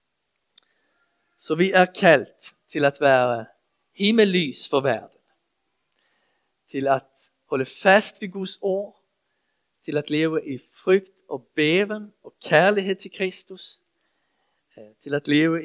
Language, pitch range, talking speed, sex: Danish, 135-180 Hz, 120 wpm, male